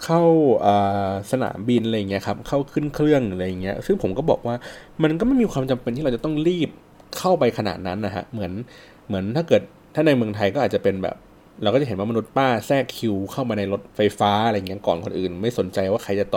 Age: 20-39